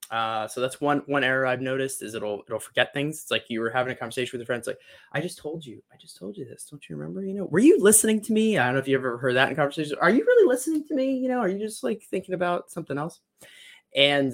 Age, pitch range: 20-39, 125-185 Hz